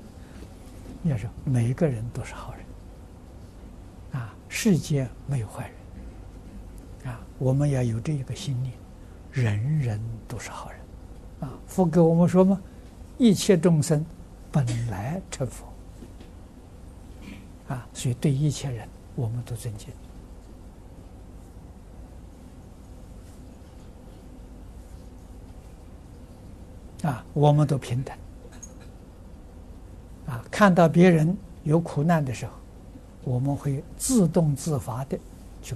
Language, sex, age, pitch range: Chinese, male, 60-79, 90-150 Hz